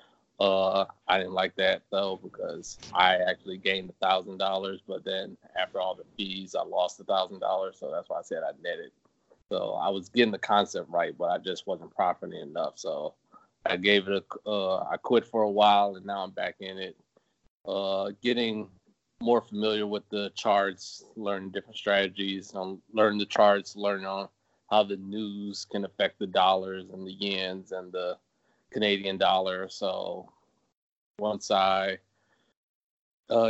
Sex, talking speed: male, 170 wpm